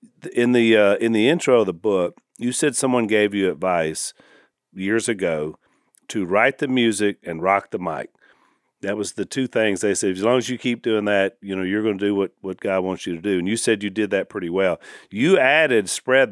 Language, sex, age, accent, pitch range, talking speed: English, male, 40-59, American, 100-120 Hz, 230 wpm